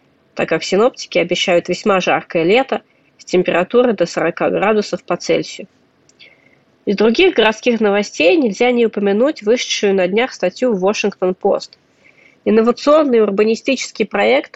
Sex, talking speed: female, 125 wpm